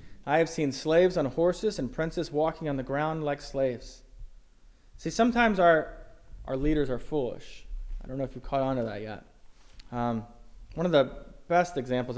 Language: English